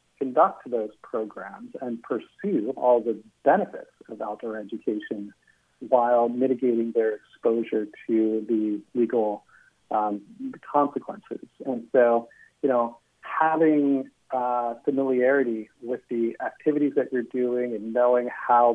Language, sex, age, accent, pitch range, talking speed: English, male, 40-59, American, 115-130 Hz, 115 wpm